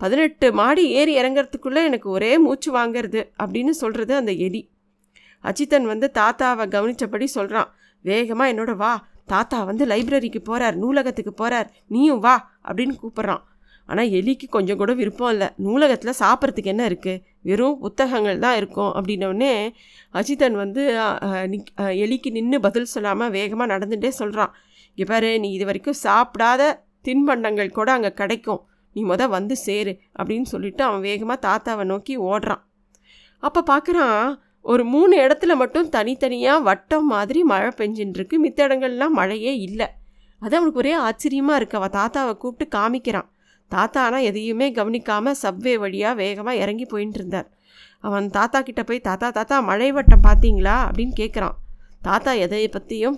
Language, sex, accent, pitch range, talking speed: Tamil, female, native, 205-265 Hz, 135 wpm